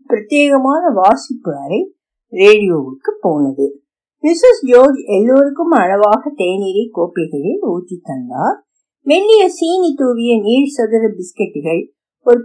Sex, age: female, 50-69